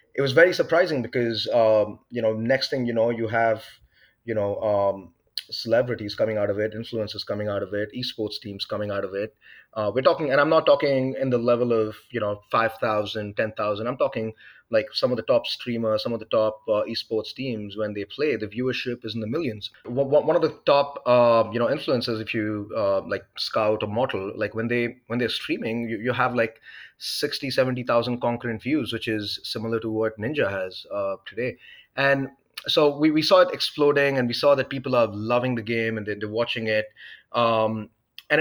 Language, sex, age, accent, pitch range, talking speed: English, male, 30-49, Indian, 105-125 Hz, 210 wpm